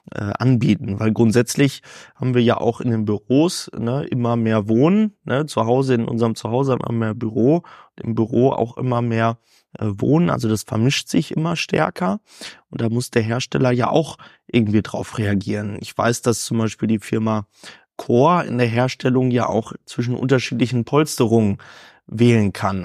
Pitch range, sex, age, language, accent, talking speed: 110-135 Hz, male, 20-39, German, German, 165 wpm